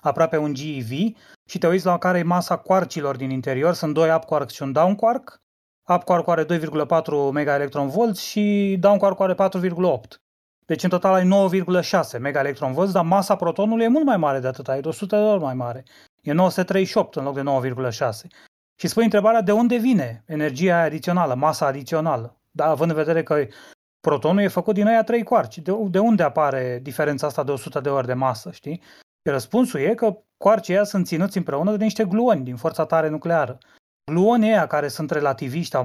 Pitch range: 145-195 Hz